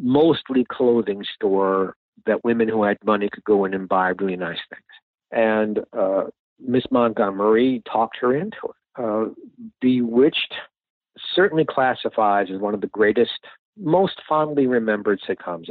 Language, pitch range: English, 100-130 Hz